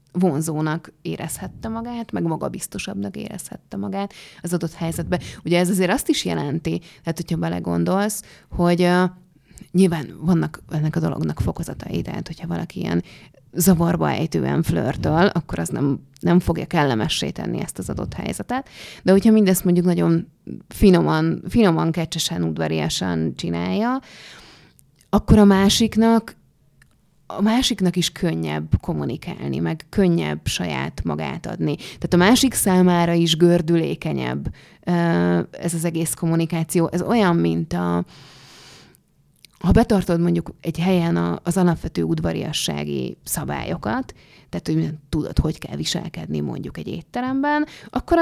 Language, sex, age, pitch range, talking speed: Hungarian, female, 30-49, 140-190 Hz, 125 wpm